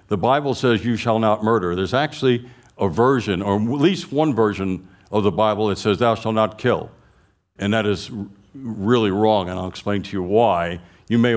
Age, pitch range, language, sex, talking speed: 60-79, 100-120 Hz, English, male, 200 wpm